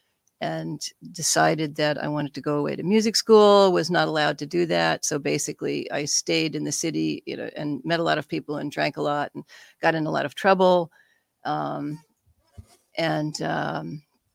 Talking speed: 190 wpm